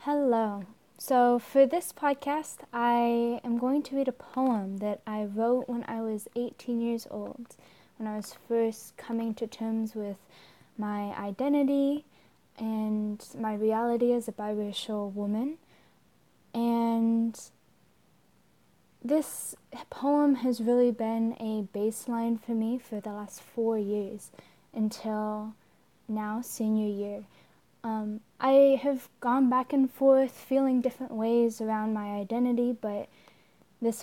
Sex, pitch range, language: female, 215-255 Hz, English